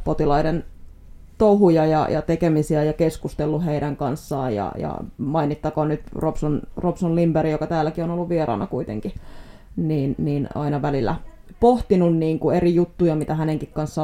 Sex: female